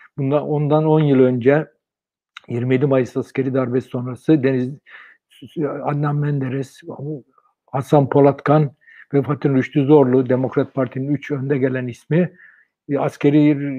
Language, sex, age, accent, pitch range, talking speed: Turkish, male, 60-79, native, 130-150 Hz, 110 wpm